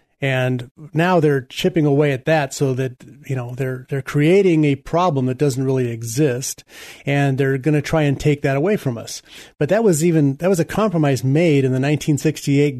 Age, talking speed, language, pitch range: 40-59, 200 wpm, English, 130-165 Hz